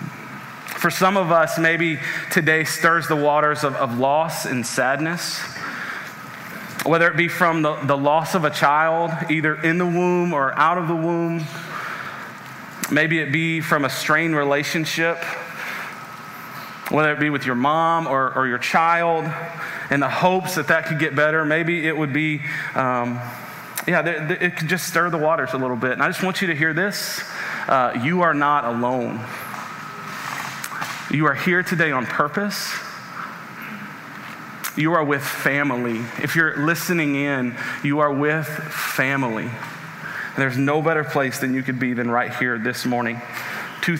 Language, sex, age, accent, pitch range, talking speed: English, male, 30-49, American, 140-170 Hz, 165 wpm